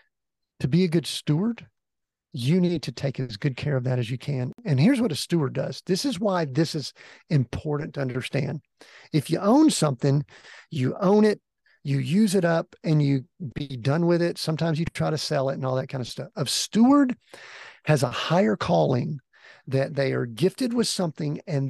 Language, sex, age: English, male, 50-69